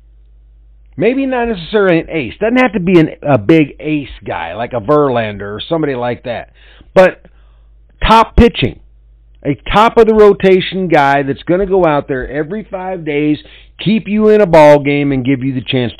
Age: 50-69